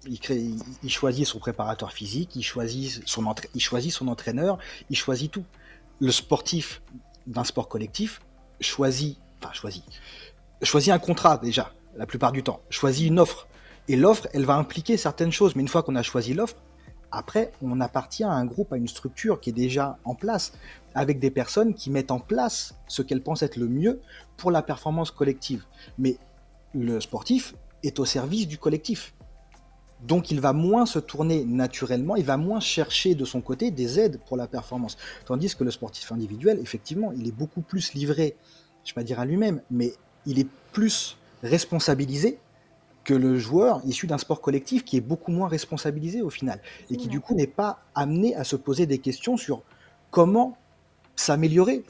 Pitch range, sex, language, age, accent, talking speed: 125-175 Hz, male, French, 30-49, French, 185 wpm